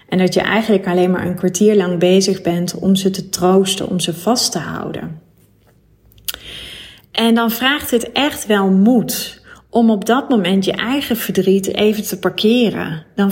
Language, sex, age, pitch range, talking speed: Dutch, female, 30-49, 185-215 Hz, 170 wpm